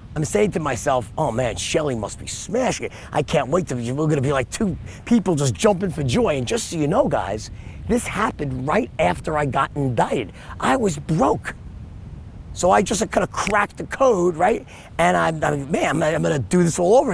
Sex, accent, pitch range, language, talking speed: male, American, 130-200 Hz, English, 230 wpm